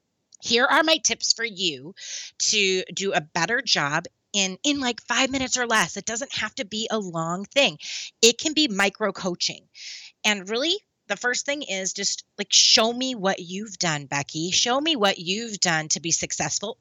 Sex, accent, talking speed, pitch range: female, American, 185 wpm, 175-240 Hz